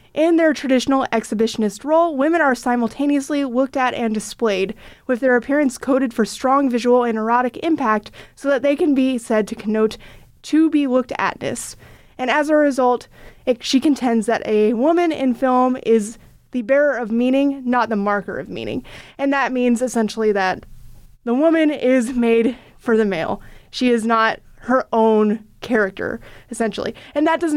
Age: 20-39